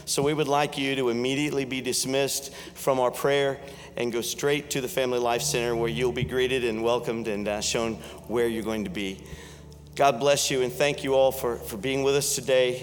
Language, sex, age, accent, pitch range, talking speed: English, male, 50-69, American, 125-165 Hz, 215 wpm